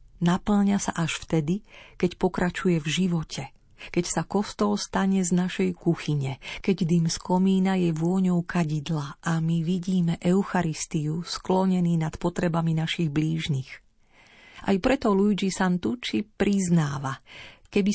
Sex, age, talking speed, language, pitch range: female, 40-59, 125 wpm, Slovak, 165-210 Hz